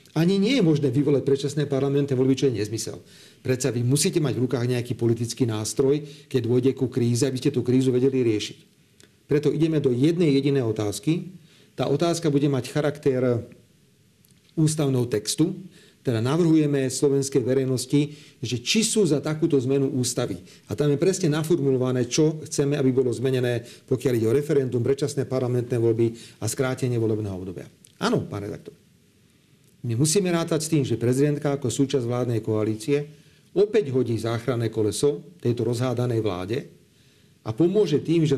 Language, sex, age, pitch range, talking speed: Slovak, male, 40-59, 120-150 Hz, 155 wpm